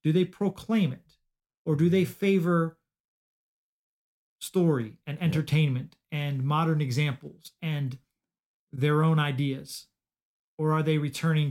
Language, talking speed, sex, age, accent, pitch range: English, 115 wpm, male, 40-59, American, 130-160 Hz